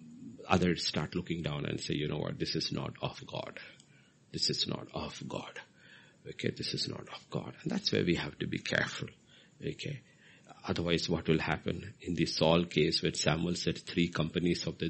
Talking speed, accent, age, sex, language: 195 wpm, Indian, 50-69, male, English